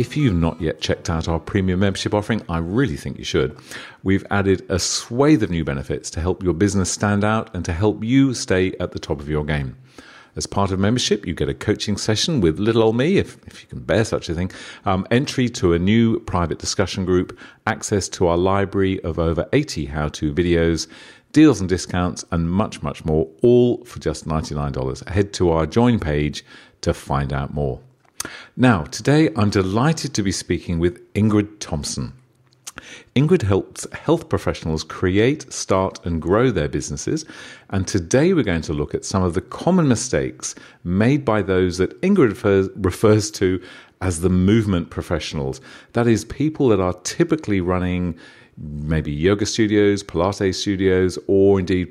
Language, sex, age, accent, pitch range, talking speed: English, male, 40-59, British, 85-110 Hz, 180 wpm